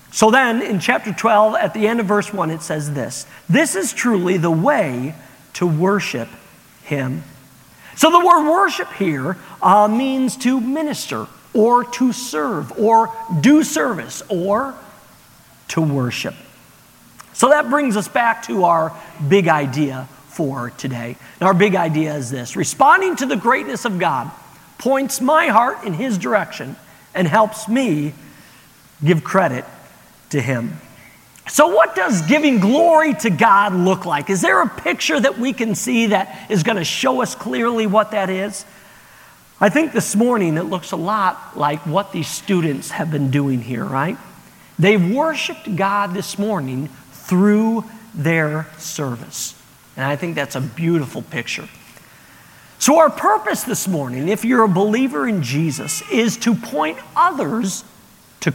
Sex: male